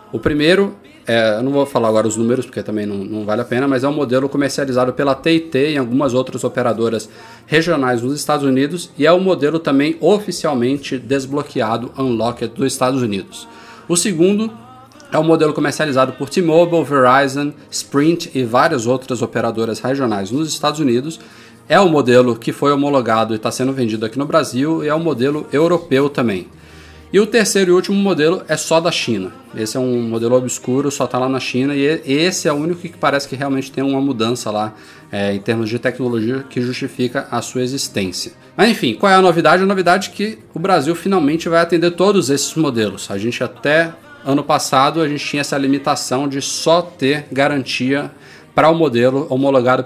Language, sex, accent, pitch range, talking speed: Portuguese, male, Brazilian, 125-155 Hz, 195 wpm